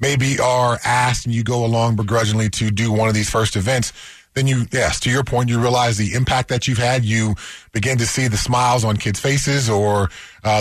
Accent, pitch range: American, 110-140 Hz